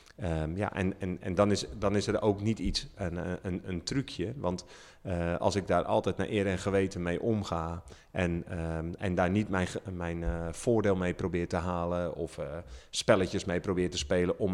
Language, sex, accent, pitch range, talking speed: Dutch, male, Dutch, 85-95 Hz, 205 wpm